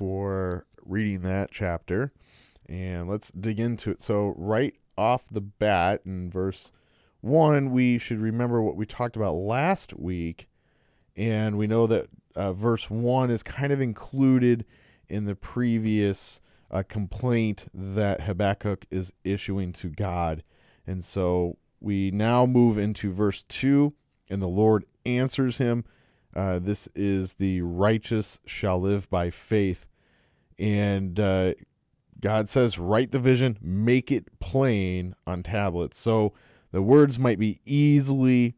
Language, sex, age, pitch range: English, male, 30-49, 95-115 Hz